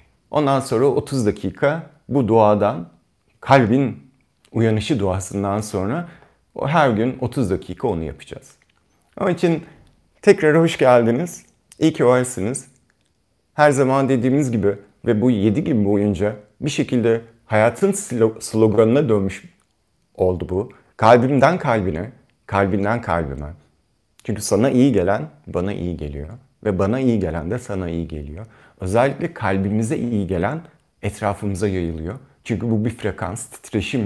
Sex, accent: male, native